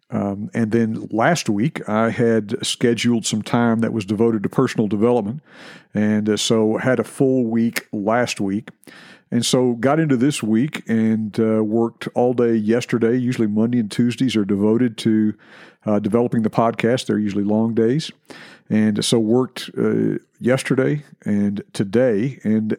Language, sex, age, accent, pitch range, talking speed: English, male, 50-69, American, 110-125 Hz, 160 wpm